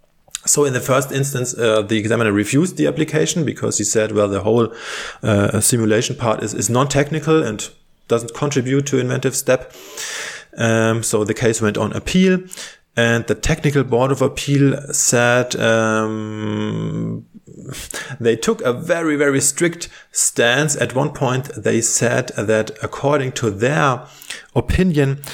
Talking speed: 145 wpm